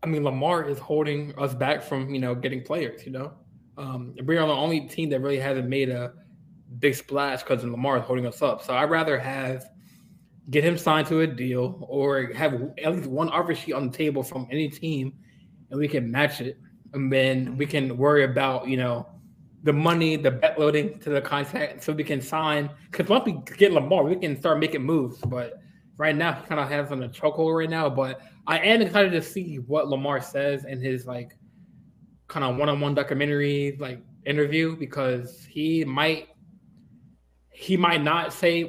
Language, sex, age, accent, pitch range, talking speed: English, male, 20-39, American, 135-160 Hz, 195 wpm